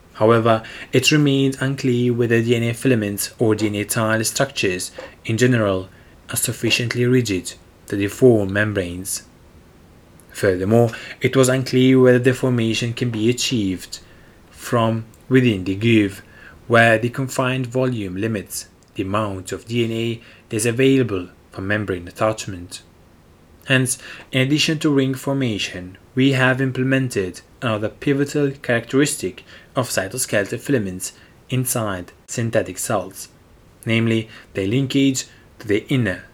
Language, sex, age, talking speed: English, male, 20-39, 115 wpm